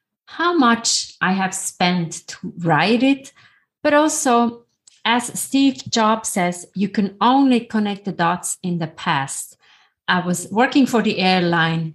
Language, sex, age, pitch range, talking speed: English, female, 30-49, 170-225 Hz, 145 wpm